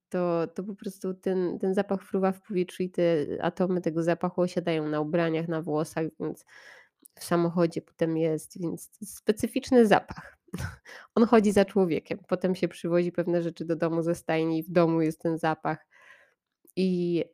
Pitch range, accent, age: 165-190 Hz, native, 20-39